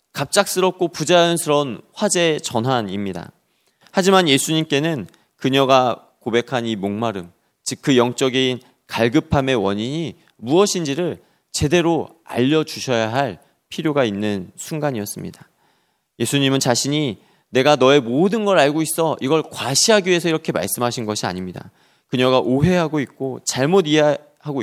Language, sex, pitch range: Korean, male, 110-155 Hz